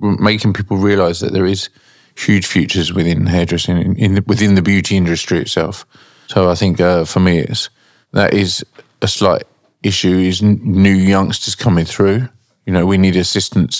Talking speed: 180 wpm